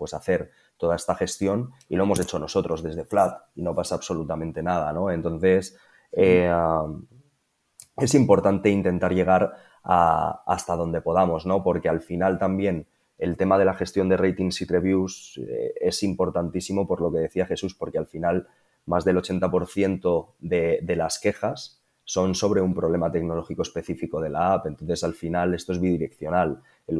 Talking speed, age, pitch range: 165 wpm, 20-39, 85-95 Hz